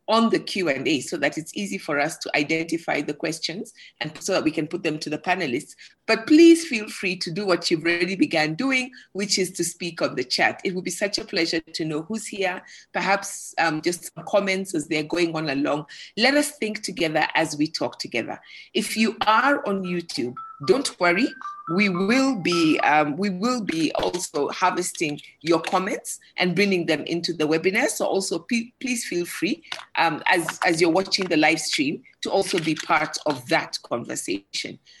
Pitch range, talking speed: 165-235 Hz, 195 wpm